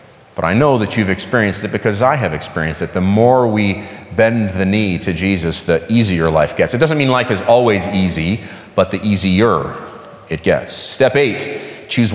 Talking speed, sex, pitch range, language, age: 195 wpm, male, 95-120 Hz, English, 30-49